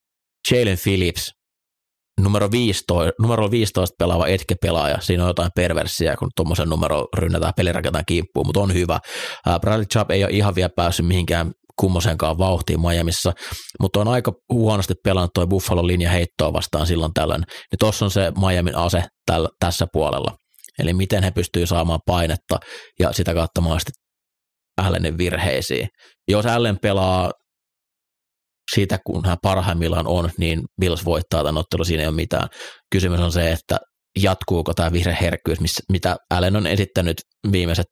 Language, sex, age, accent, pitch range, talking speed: Finnish, male, 30-49, native, 85-100 Hz, 145 wpm